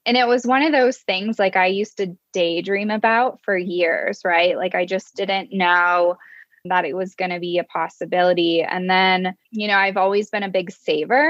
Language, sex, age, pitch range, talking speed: English, female, 10-29, 180-225 Hz, 205 wpm